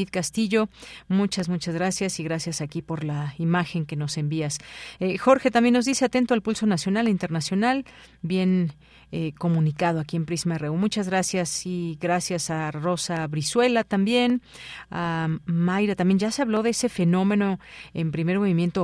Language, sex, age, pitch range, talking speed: Spanish, female, 40-59, 165-200 Hz, 160 wpm